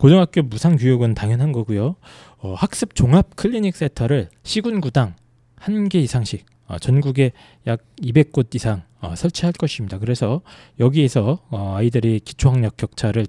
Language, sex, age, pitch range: Korean, male, 20-39, 100-145 Hz